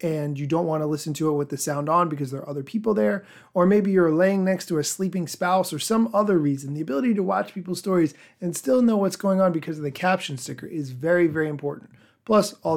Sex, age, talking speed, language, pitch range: male, 30-49, 255 wpm, English, 150-190 Hz